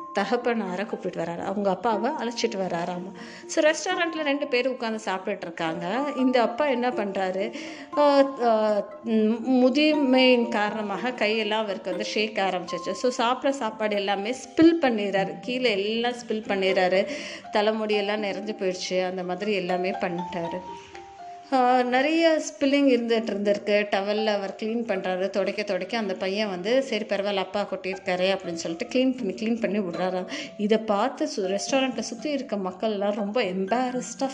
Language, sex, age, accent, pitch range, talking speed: Tamil, female, 30-49, native, 190-250 Hz, 130 wpm